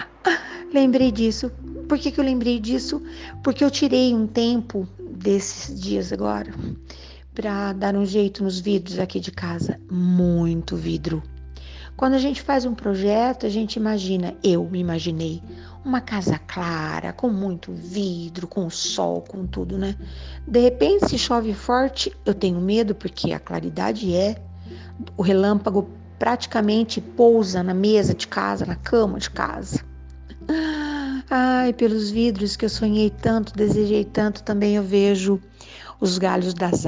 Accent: Brazilian